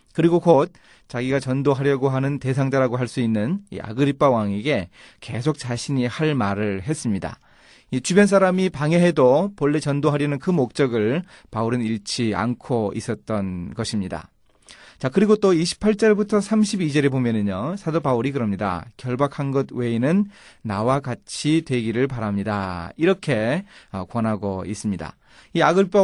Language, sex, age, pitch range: Korean, male, 30-49, 115-165 Hz